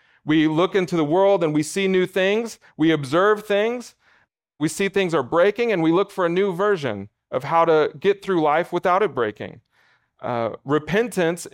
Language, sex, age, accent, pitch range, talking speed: English, male, 40-59, American, 145-195 Hz, 185 wpm